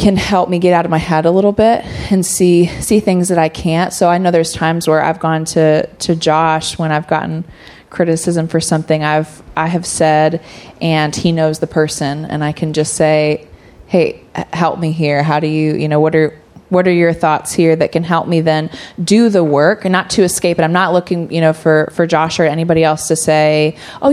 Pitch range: 155-180 Hz